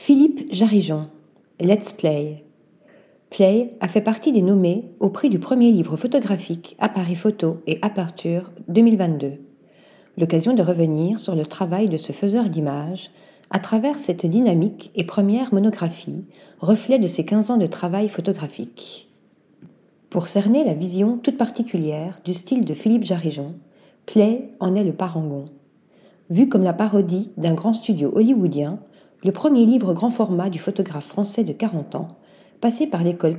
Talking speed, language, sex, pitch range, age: 155 wpm, French, female, 170-220 Hz, 40-59